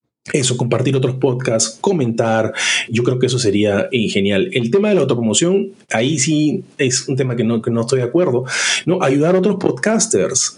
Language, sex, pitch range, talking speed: Spanish, male, 125-180 Hz, 195 wpm